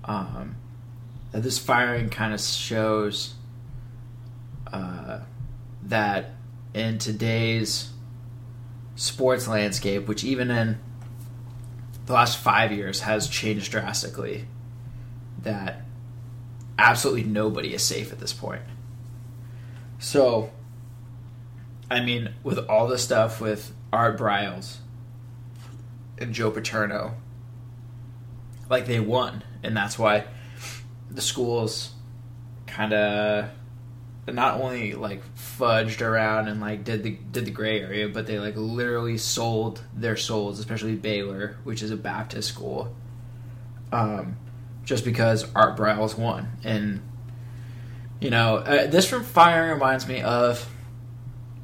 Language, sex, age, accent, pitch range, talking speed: English, male, 20-39, American, 110-120 Hz, 110 wpm